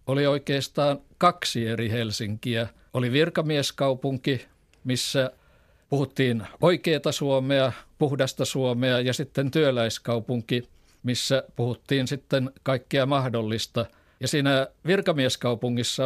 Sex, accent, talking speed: male, native, 90 wpm